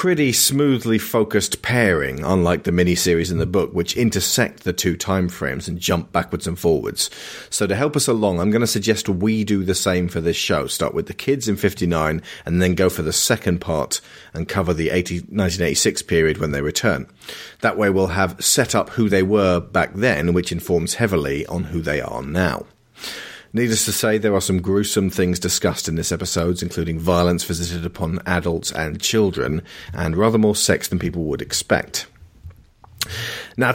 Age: 40-59